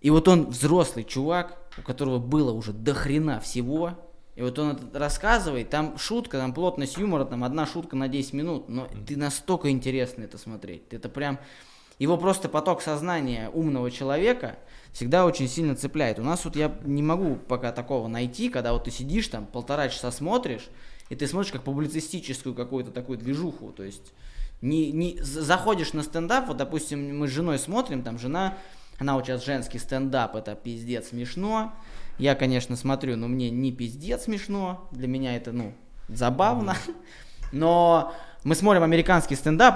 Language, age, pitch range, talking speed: Russian, 20-39, 125-165 Hz, 170 wpm